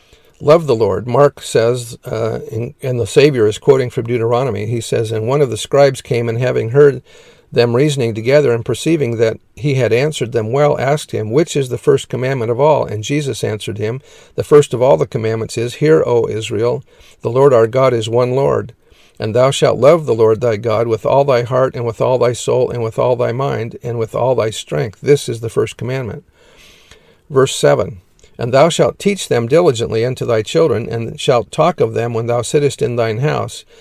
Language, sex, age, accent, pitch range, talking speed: English, male, 50-69, American, 115-140 Hz, 210 wpm